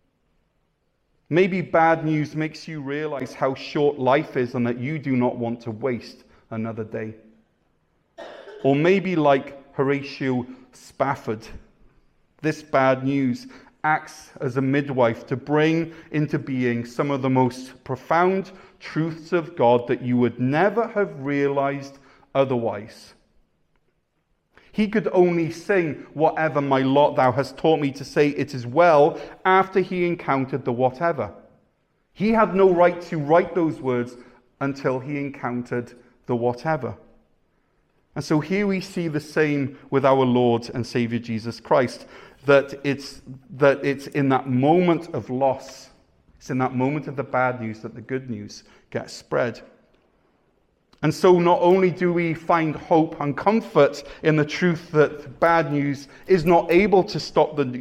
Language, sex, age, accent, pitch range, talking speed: English, male, 40-59, British, 130-170 Hz, 150 wpm